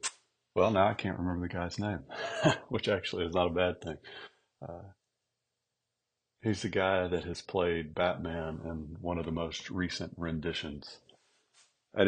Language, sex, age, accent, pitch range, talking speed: English, male, 40-59, American, 80-95 Hz, 155 wpm